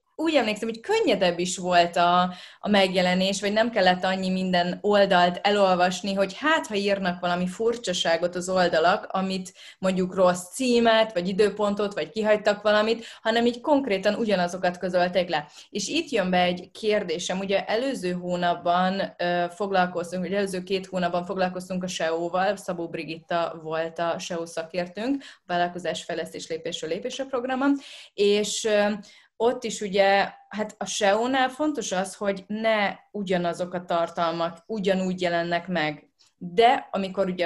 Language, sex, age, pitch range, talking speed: Hungarian, female, 20-39, 175-210 Hz, 140 wpm